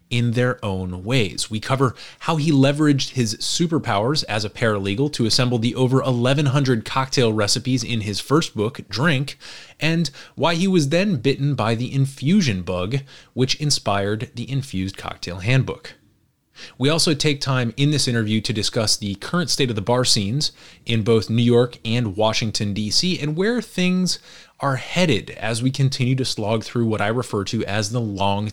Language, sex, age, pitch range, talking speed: English, male, 30-49, 110-145 Hz, 175 wpm